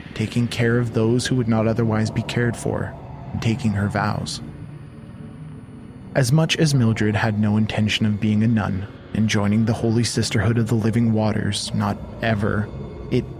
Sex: male